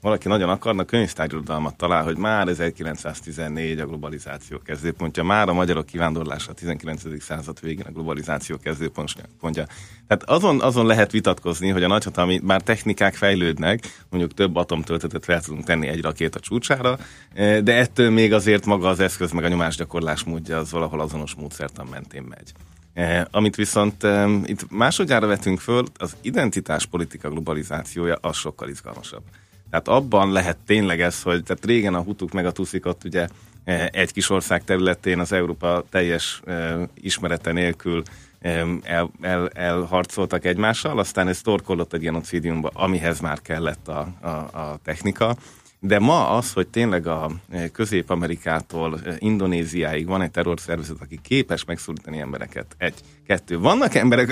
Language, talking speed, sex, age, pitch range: Hungarian, 140 wpm, male, 30-49, 80-100 Hz